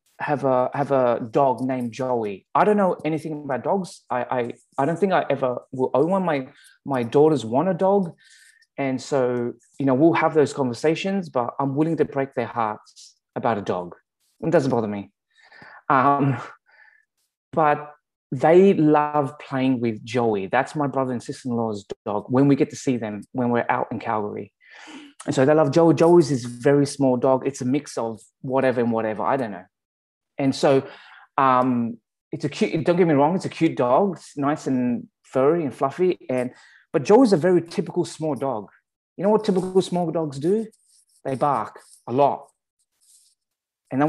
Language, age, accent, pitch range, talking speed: English, 20-39, British, 130-175 Hz, 185 wpm